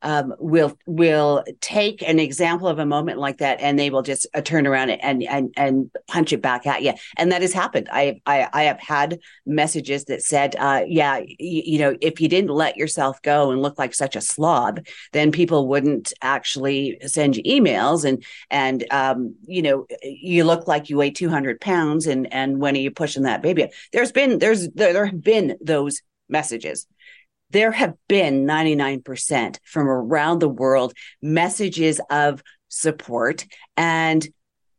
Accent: American